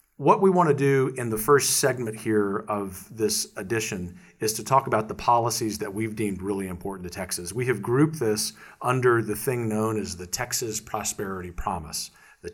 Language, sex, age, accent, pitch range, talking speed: English, male, 40-59, American, 100-120 Hz, 190 wpm